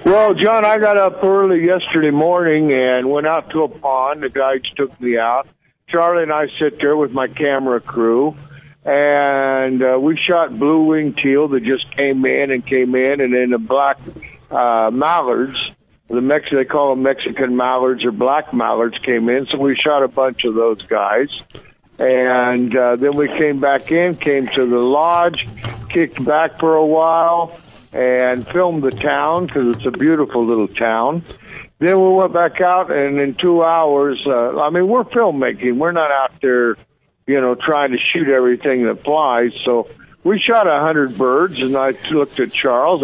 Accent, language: American, English